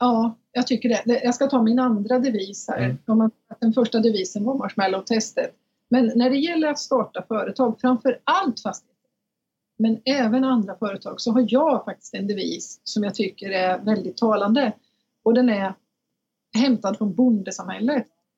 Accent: native